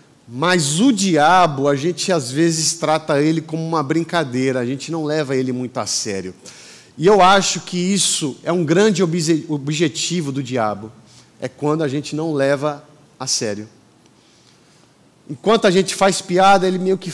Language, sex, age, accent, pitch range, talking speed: Portuguese, male, 40-59, Brazilian, 135-180 Hz, 165 wpm